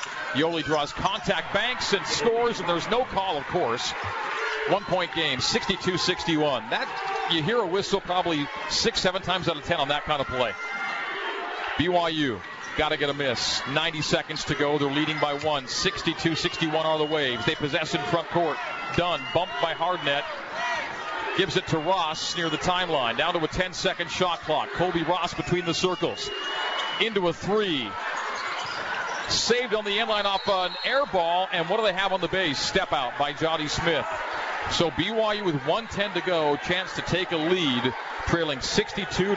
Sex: male